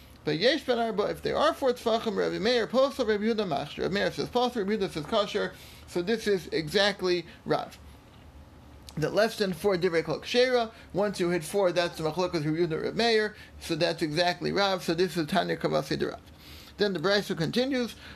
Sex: male